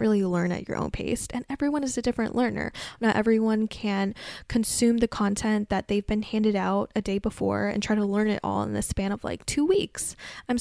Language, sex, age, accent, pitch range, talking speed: English, female, 10-29, American, 195-225 Hz, 225 wpm